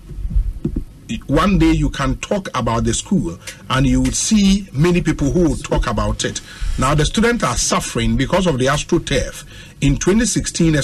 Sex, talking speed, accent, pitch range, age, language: male, 165 wpm, Nigerian, 120-170 Hz, 50-69, English